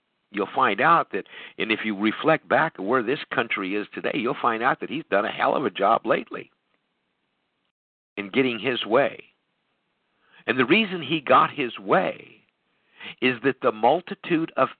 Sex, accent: male, American